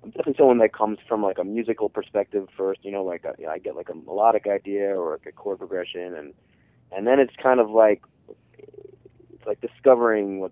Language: English